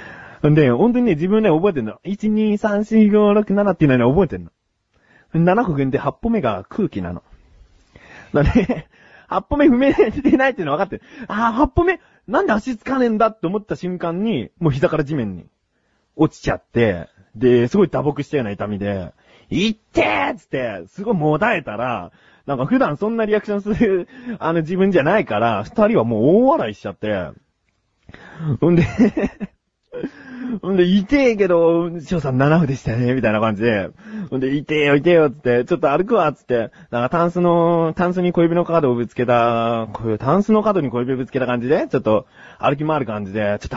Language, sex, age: Japanese, male, 30-49